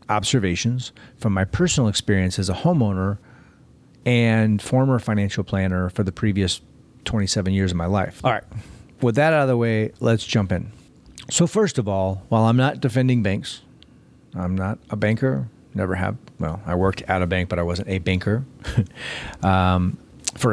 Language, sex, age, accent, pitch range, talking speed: English, male, 40-59, American, 95-130 Hz, 170 wpm